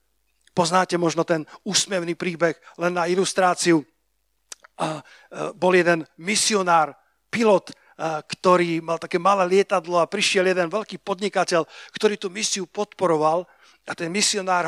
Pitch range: 170-210 Hz